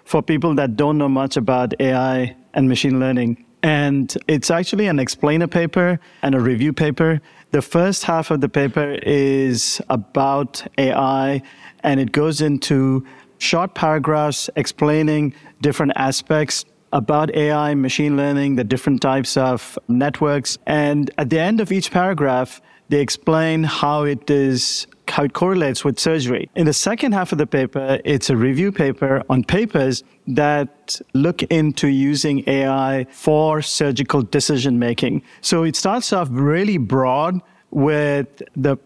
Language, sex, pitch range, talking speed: English, male, 135-160 Hz, 145 wpm